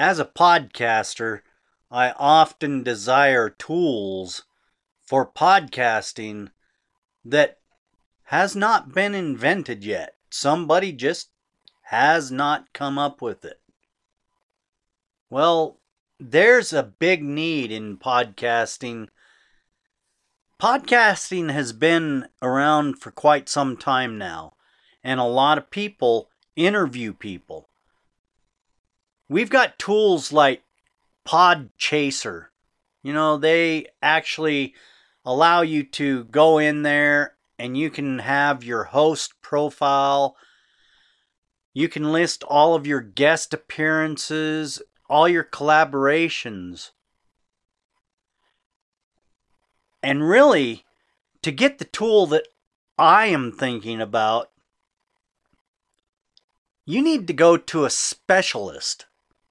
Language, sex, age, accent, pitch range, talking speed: English, male, 40-59, American, 130-165 Hz, 100 wpm